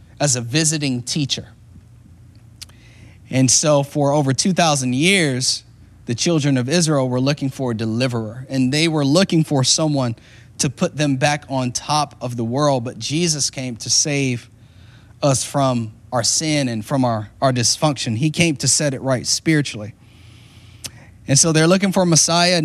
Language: English